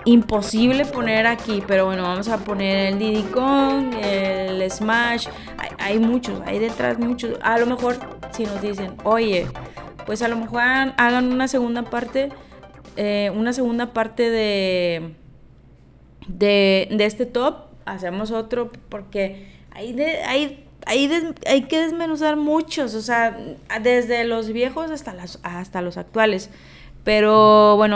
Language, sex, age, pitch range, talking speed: Spanish, female, 20-39, 210-250 Hz, 145 wpm